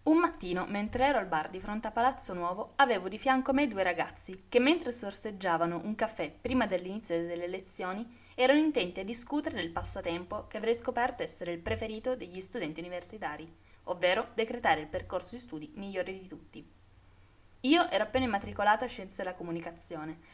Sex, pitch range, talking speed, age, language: female, 170-245 Hz, 175 wpm, 20-39, Italian